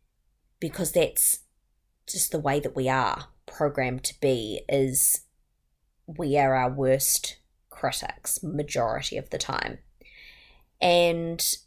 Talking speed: 115 wpm